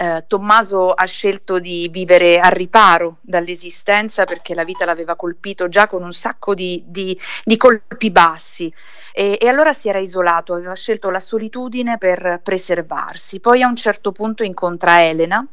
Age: 40-59